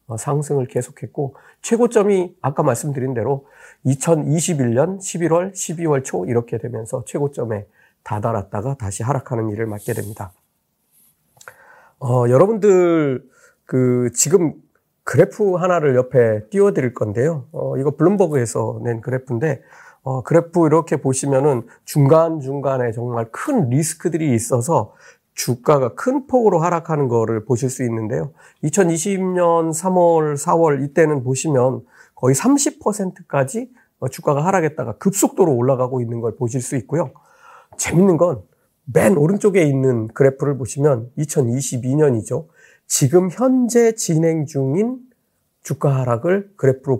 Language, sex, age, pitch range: Korean, male, 40-59, 125-175 Hz